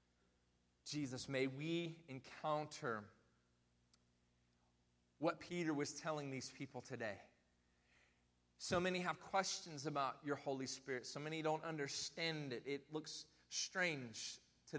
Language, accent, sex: English, American, male